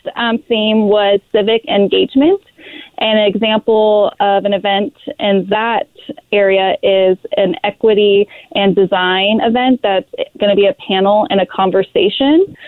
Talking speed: 135 wpm